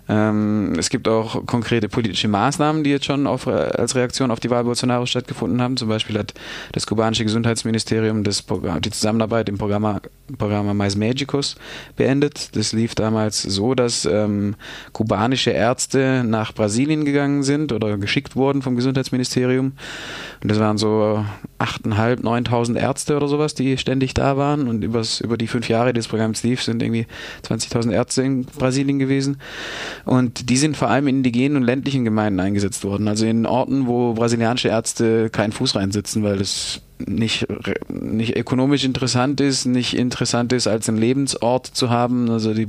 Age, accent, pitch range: 20-39, German, 105-130 Hz